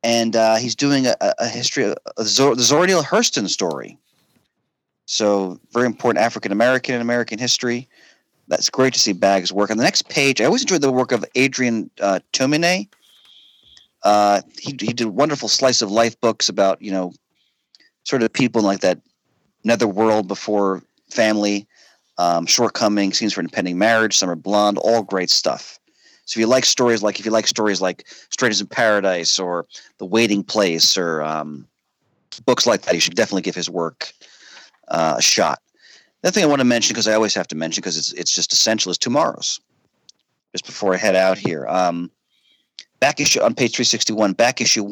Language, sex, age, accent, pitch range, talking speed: English, male, 40-59, American, 100-125 Hz, 185 wpm